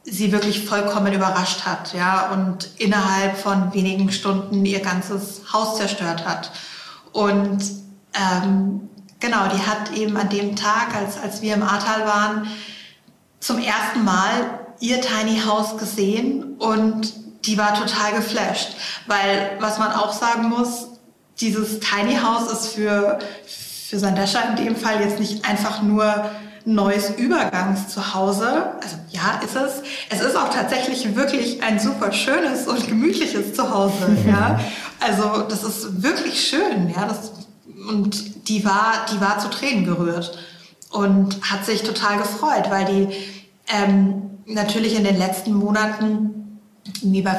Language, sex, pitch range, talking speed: German, female, 195-220 Hz, 140 wpm